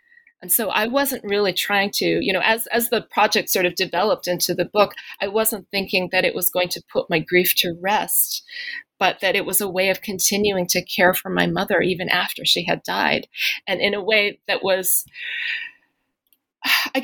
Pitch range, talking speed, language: 185-250 Hz, 200 wpm, English